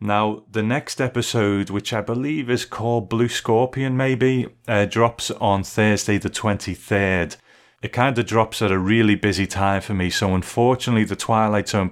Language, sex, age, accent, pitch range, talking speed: English, male, 30-49, British, 90-110 Hz, 170 wpm